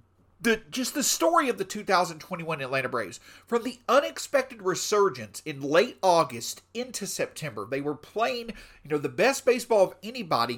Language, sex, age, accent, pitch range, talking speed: English, male, 40-59, American, 160-245 Hz, 155 wpm